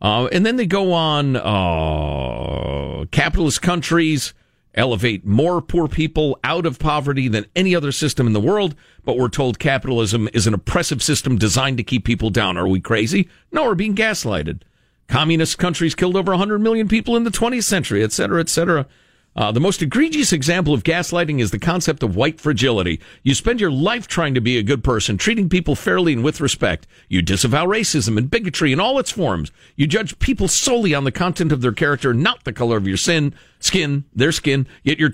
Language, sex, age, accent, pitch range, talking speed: English, male, 50-69, American, 125-195 Hz, 200 wpm